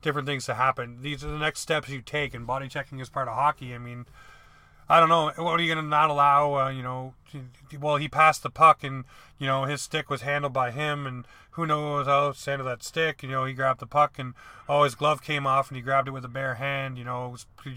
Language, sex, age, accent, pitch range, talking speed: English, male, 30-49, American, 130-150 Hz, 260 wpm